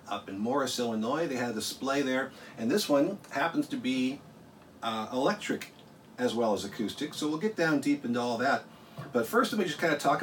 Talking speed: 215 wpm